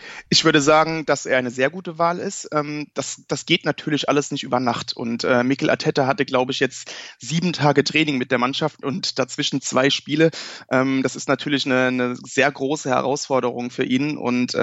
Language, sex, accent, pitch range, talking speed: German, male, German, 130-150 Hz, 190 wpm